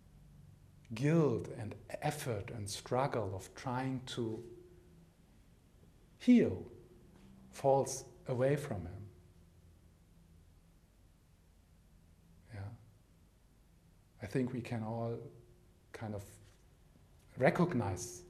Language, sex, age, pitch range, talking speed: English, male, 50-69, 90-125 Hz, 70 wpm